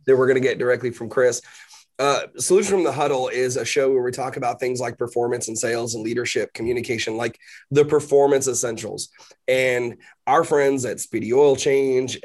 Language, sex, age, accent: English, male, 30-49, American